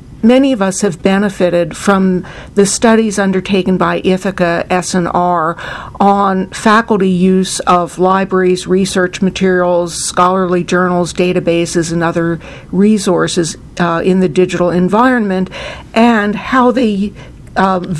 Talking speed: 115 wpm